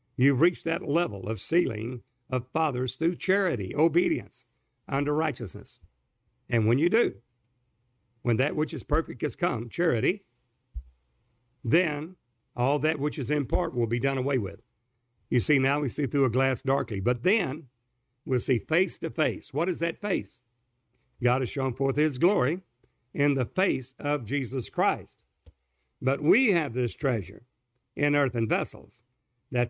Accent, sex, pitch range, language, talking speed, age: American, male, 120-150 Hz, English, 160 wpm, 60-79